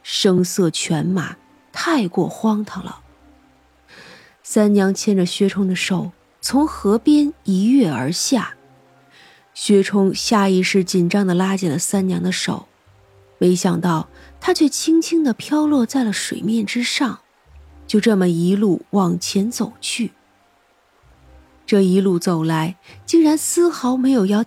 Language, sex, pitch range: Chinese, female, 175-225 Hz